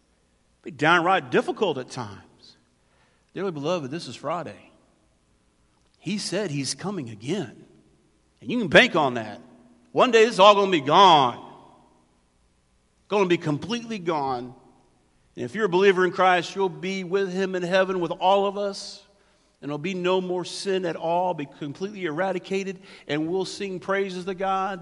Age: 50-69